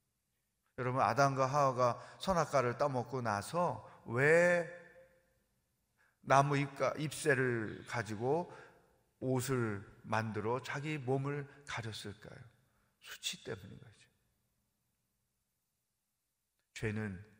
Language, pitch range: Korean, 120-170 Hz